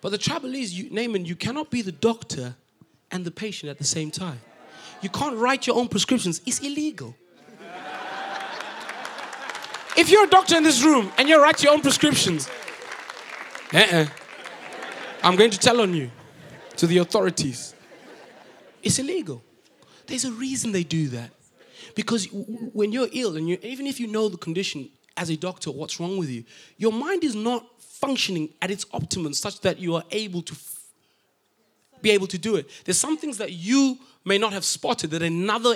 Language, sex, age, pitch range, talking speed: English, male, 30-49, 180-265 Hz, 175 wpm